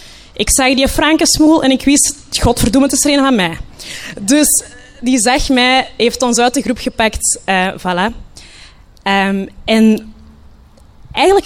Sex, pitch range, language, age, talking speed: female, 195-270 Hz, Dutch, 20-39, 145 wpm